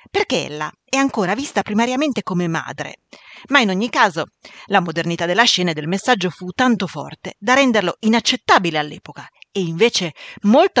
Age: 40-59